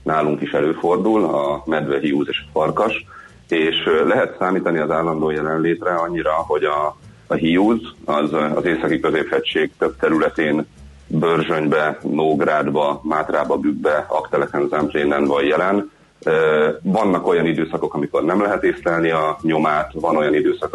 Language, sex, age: Hungarian, male, 30-49